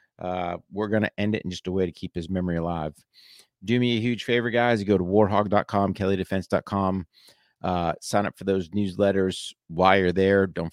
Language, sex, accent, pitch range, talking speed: English, male, American, 90-110 Hz, 195 wpm